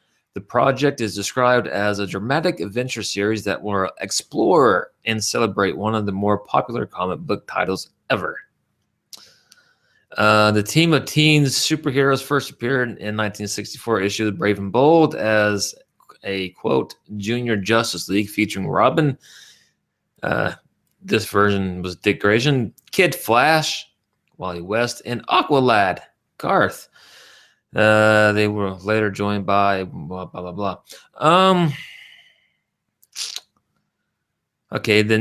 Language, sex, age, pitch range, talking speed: English, male, 20-39, 105-135 Hz, 125 wpm